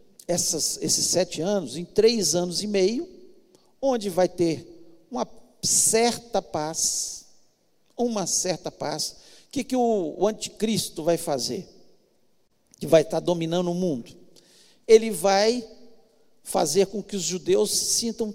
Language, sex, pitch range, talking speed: Portuguese, male, 190-230 Hz, 130 wpm